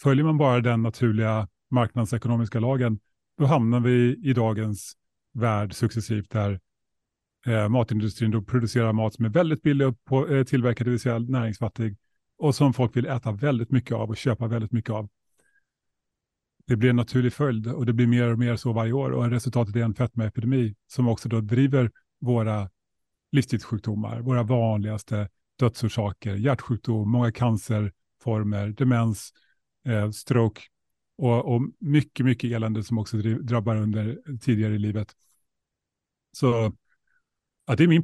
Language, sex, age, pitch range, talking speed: Swedish, male, 30-49, 110-125 Hz, 145 wpm